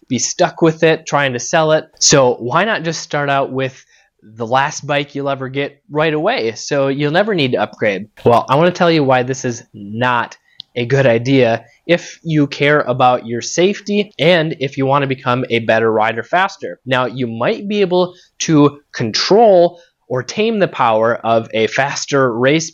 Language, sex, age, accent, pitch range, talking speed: English, male, 20-39, American, 125-150 Hz, 195 wpm